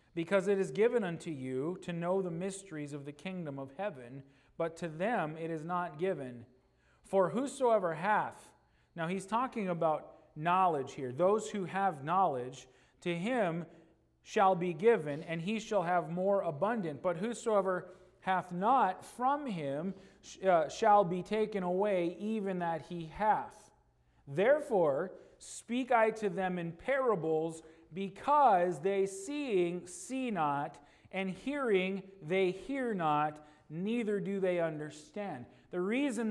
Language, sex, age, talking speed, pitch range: English, male, 40-59, 140 wpm, 170-220 Hz